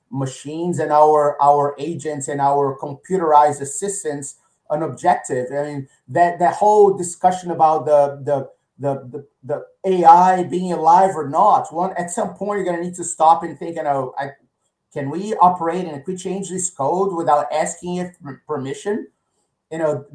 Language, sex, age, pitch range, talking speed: English, male, 30-49, 145-180 Hz, 175 wpm